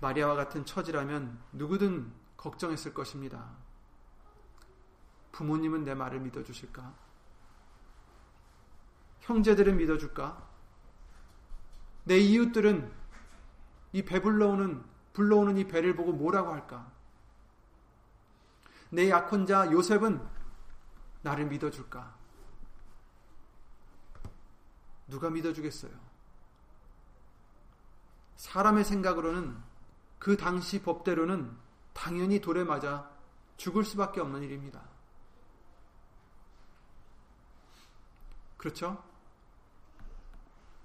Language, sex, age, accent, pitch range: Korean, male, 30-49, native, 115-180 Hz